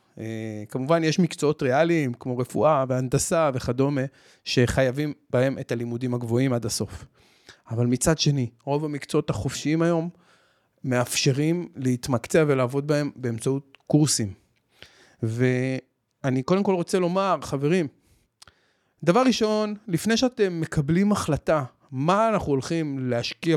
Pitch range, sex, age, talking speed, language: 130-170 Hz, male, 30-49, 115 wpm, Hebrew